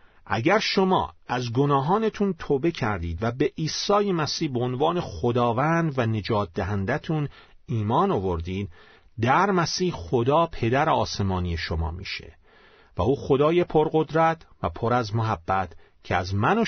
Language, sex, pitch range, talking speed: Persian, male, 110-165 Hz, 135 wpm